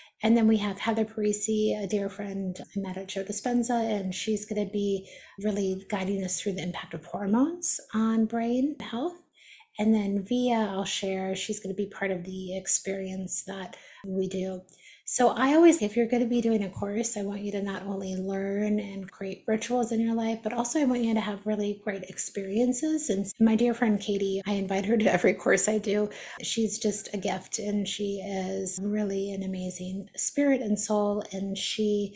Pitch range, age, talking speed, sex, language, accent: 195-220 Hz, 30-49, 200 wpm, female, English, American